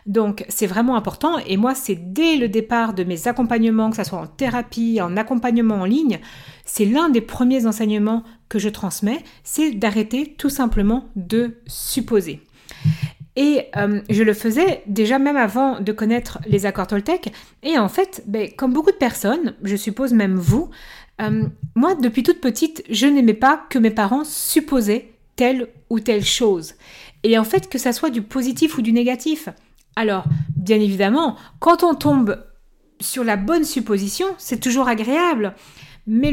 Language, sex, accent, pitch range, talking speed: French, female, French, 210-270 Hz, 170 wpm